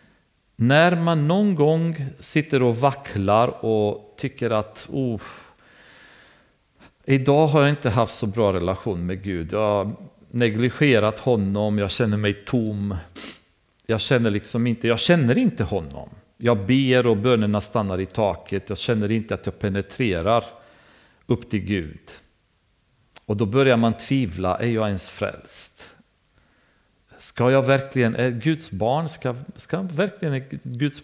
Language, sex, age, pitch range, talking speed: Swedish, male, 40-59, 100-135 Hz, 135 wpm